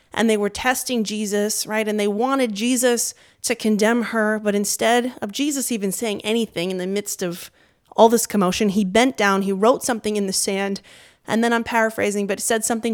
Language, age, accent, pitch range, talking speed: English, 20-39, American, 205-260 Hz, 200 wpm